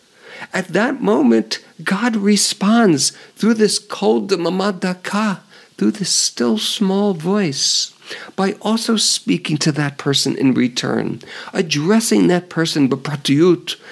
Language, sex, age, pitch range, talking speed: English, male, 50-69, 155-210 Hz, 115 wpm